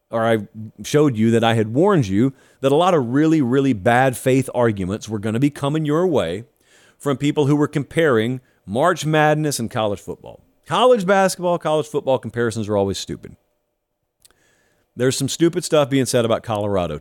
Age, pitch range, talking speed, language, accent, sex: 40-59, 120-165 Hz, 180 wpm, English, American, male